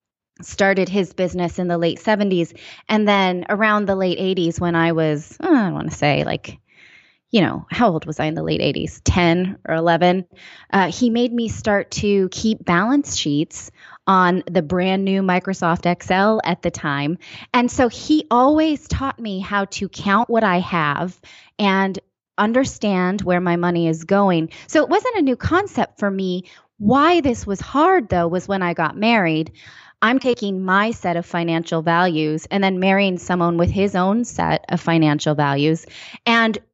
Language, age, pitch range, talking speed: English, 20-39, 170-215 Hz, 175 wpm